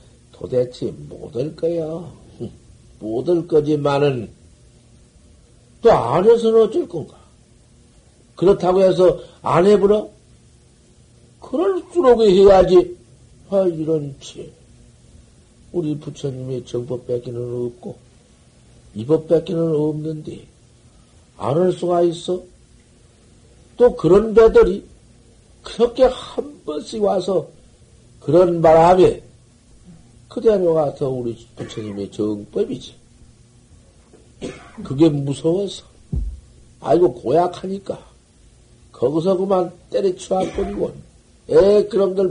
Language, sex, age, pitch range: Korean, male, 50-69, 130-195 Hz